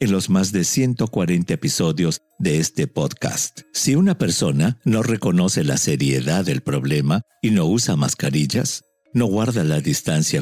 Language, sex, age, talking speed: English, male, 50-69, 150 wpm